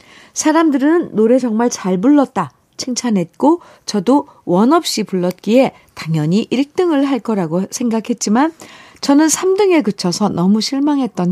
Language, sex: Korean, female